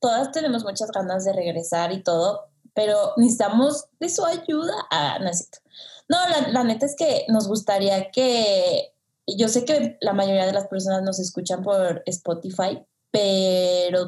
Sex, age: female, 20-39